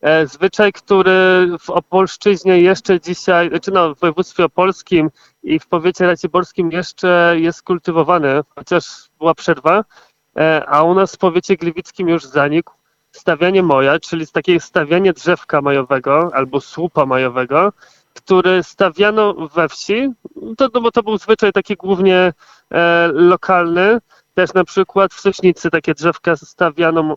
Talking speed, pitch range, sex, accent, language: 125 wpm, 160-190 Hz, male, native, Polish